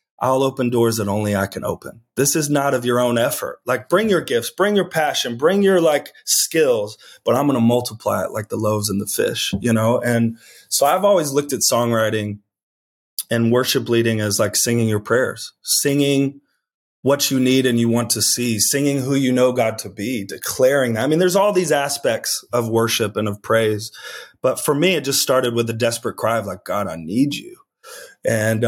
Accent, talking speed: American, 210 wpm